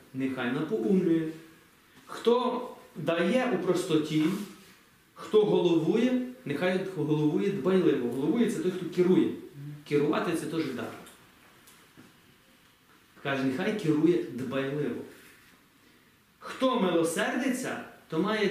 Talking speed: 90 wpm